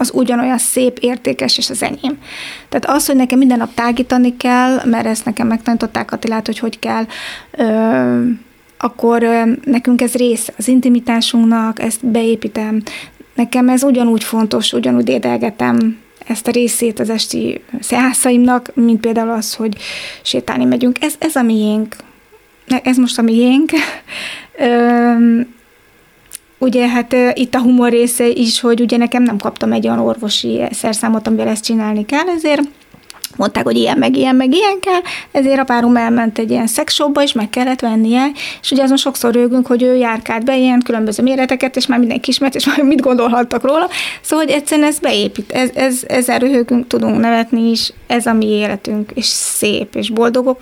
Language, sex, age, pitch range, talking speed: Hungarian, female, 20-39, 230-260 Hz, 165 wpm